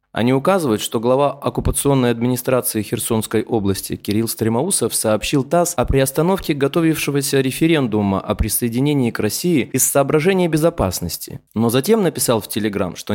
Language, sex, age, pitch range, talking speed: Russian, male, 20-39, 105-150 Hz, 130 wpm